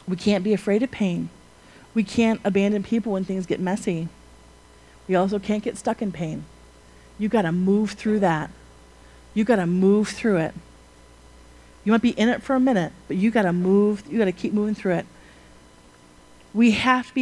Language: English